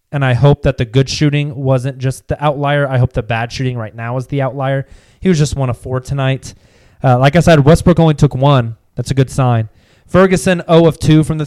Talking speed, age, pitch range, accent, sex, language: 240 wpm, 20-39, 120-145 Hz, American, male, English